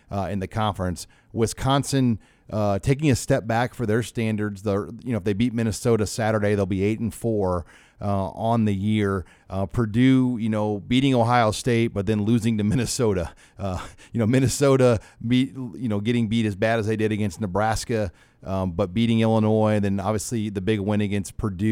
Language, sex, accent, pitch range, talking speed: English, male, American, 95-115 Hz, 190 wpm